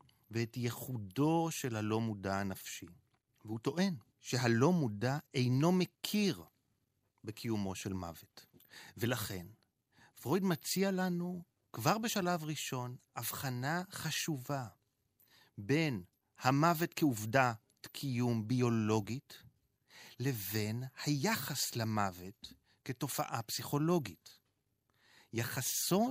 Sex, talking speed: male, 80 wpm